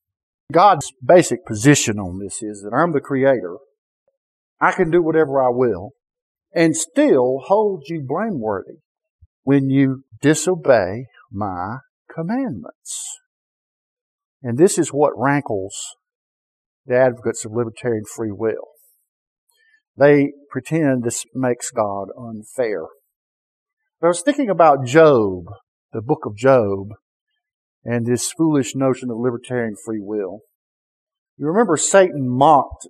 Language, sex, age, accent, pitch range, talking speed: English, male, 50-69, American, 120-170 Hz, 115 wpm